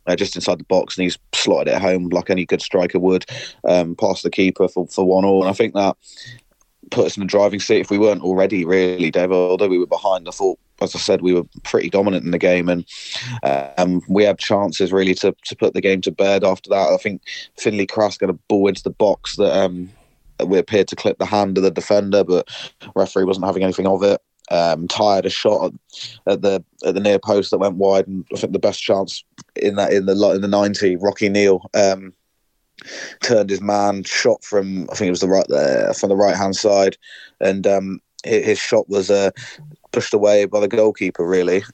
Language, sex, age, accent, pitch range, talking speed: English, male, 20-39, British, 90-100 Hz, 225 wpm